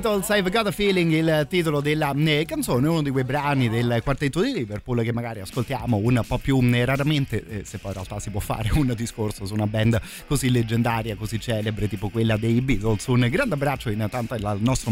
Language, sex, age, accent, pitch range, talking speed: Italian, male, 30-49, native, 110-130 Hz, 200 wpm